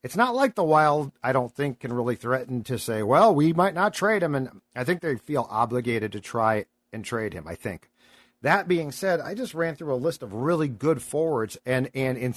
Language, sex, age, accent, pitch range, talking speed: English, male, 50-69, American, 120-145 Hz, 235 wpm